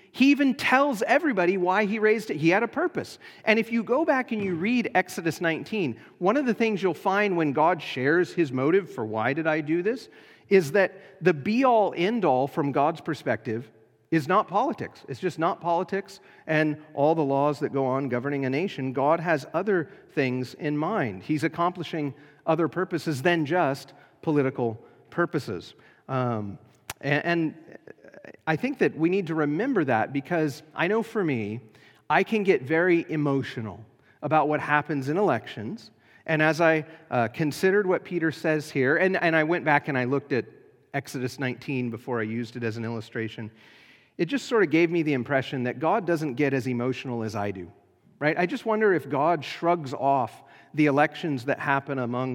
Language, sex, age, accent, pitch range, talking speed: English, male, 40-59, American, 135-185 Hz, 185 wpm